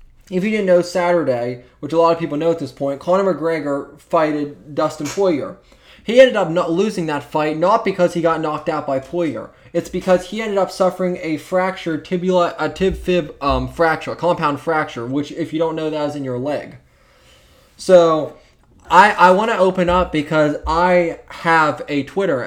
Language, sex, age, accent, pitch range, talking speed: English, male, 20-39, American, 140-175 Hz, 190 wpm